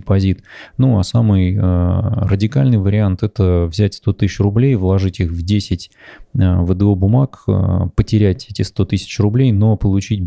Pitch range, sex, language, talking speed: 95-105 Hz, male, Russian, 140 wpm